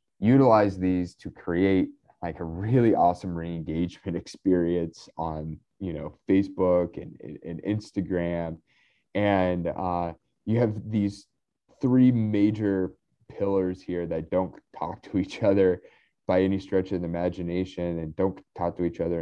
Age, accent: 20-39, American